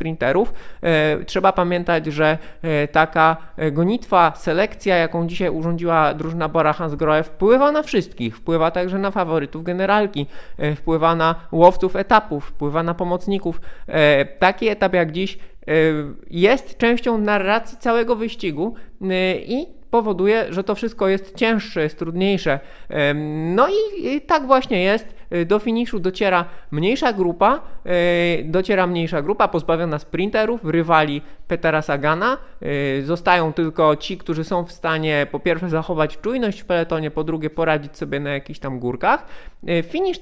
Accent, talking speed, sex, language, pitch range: native, 130 wpm, male, Polish, 160-210 Hz